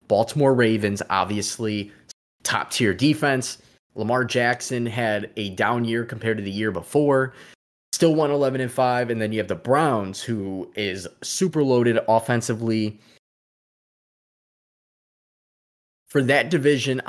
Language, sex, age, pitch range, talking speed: English, male, 20-39, 110-135 Hz, 120 wpm